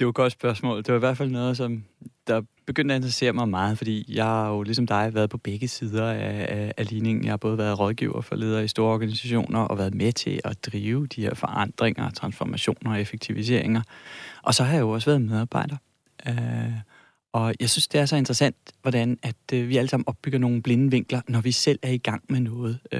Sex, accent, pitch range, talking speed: male, native, 115-135 Hz, 220 wpm